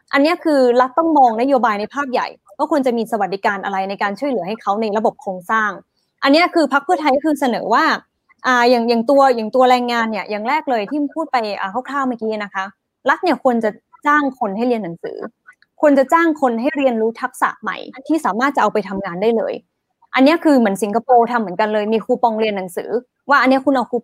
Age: 20-39